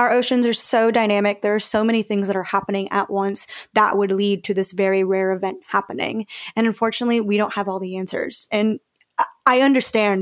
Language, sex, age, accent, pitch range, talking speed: English, female, 20-39, American, 200-230 Hz, 205 wpm